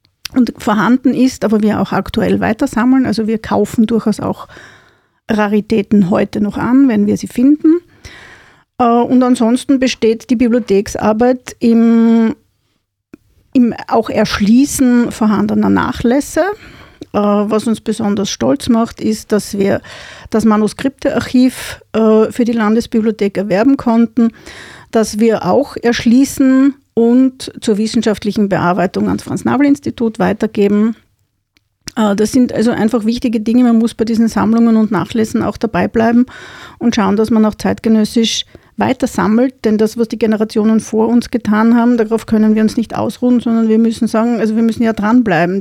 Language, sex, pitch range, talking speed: German, female, 210-240 Hz, 140 wpm